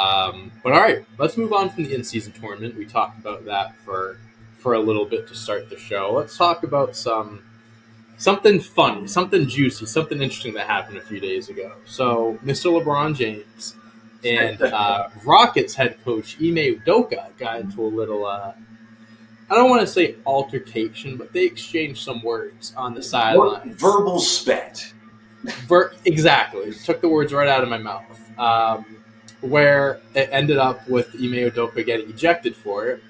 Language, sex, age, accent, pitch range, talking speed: English, male, 20-39, American, 110-140 Hz, 170 wpm